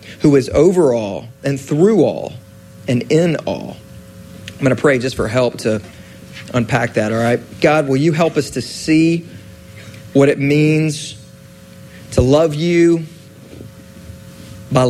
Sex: male